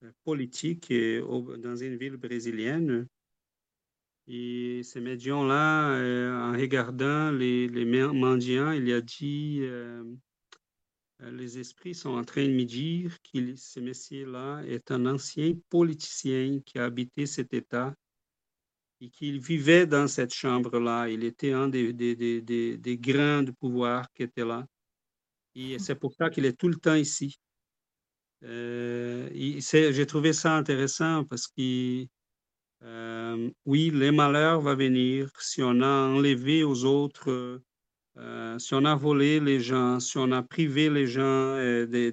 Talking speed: 145 wpm